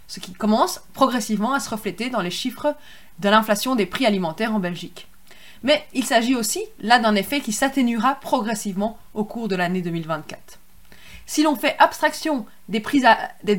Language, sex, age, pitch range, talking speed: French, female, 20-39, 200-260 Hz, 175 wpm